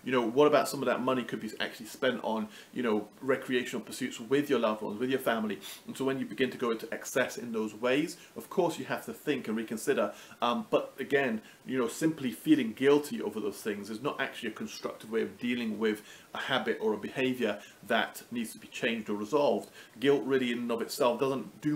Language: English